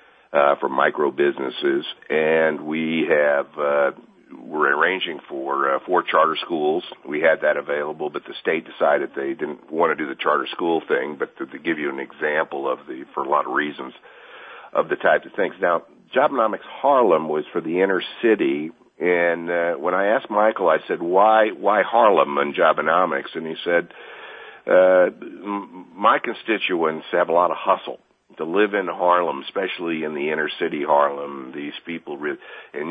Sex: male